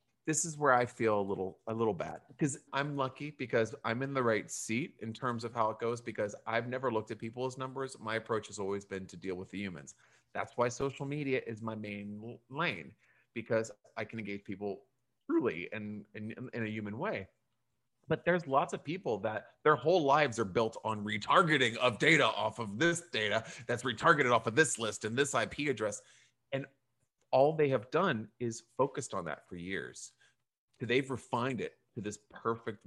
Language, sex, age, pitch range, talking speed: English, male, 30-49, 110-140 Hz, 200 wpm